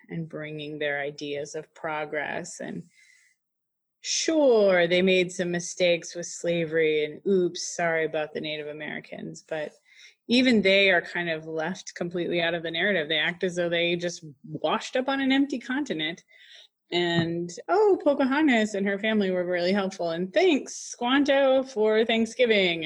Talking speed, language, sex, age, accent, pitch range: 155 wpm, English, female, 20-39, American, 160-215 Hz